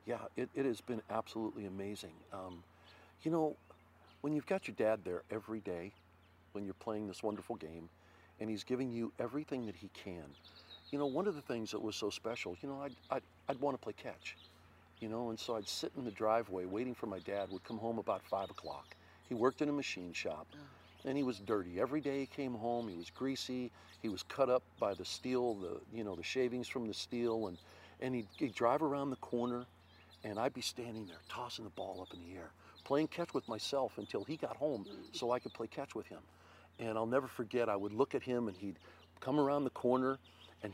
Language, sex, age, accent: English, male, 50-69, American